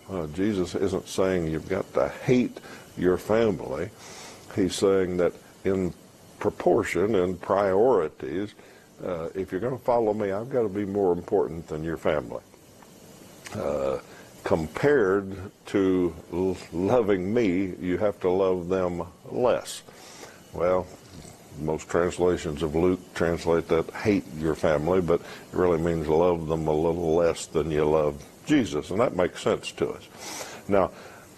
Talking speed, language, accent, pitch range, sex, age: 145 wpm, English, American, 85-95 Hz, male, 60-79